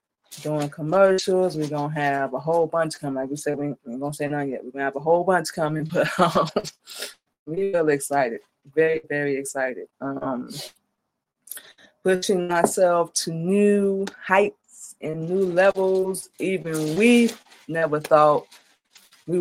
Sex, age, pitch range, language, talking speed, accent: female, 20-39, 145-175 Hz, English, 145 wpm, American